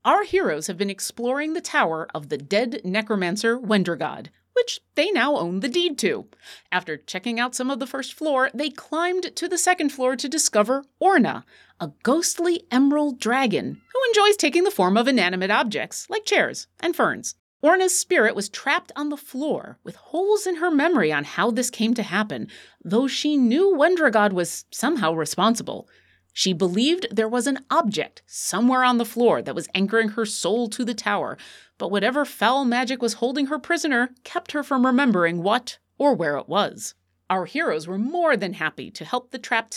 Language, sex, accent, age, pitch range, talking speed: English, female, American, 30-49, 210-315 Hz, 185 wpm